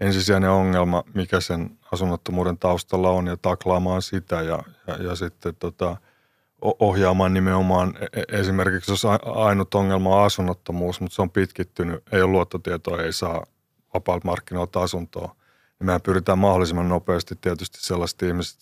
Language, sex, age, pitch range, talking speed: Finnish, male, 30-49, 90-95 Hz, 140 wpm